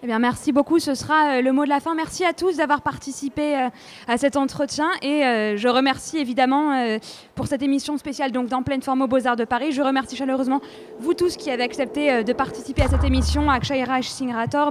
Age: 20-39